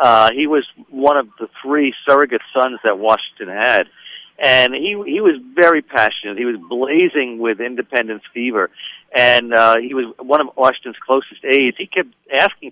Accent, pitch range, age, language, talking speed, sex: American, 115-145 Hz, 50-69, English, 170 wpm, male